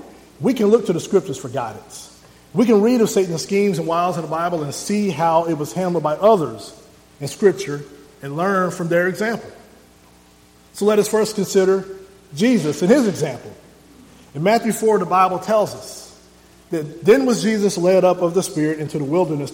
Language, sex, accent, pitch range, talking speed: English, male, American, 135-190 Hz, 190 wpm